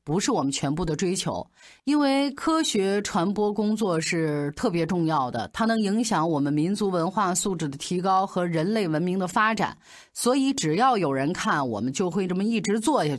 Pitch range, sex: 165-230 Hz, female